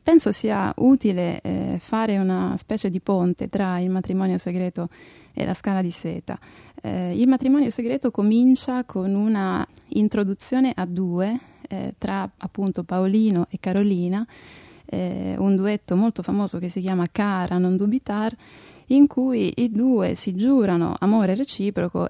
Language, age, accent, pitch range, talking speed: Italian, 20-39, native, 180-215 Hz, 145 wpm